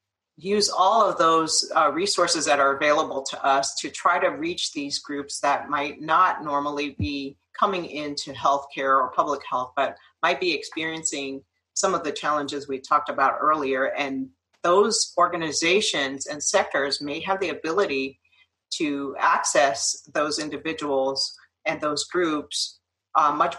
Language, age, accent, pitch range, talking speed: English, 40-59, American, 140-175 Hz, 150 wpm